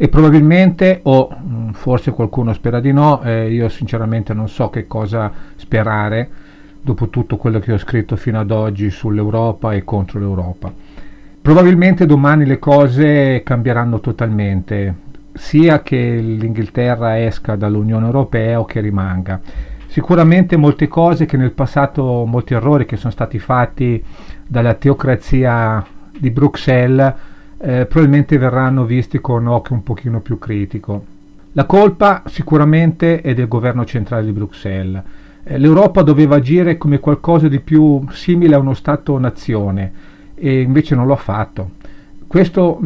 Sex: male